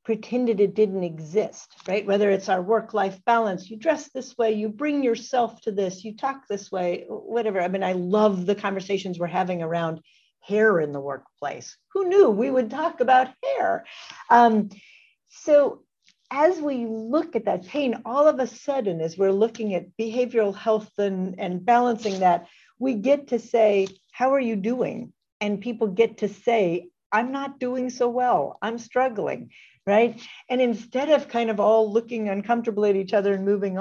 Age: 50-69